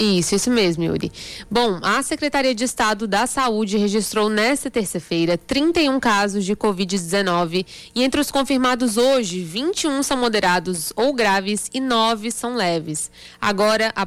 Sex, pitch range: female, 200-255 Hz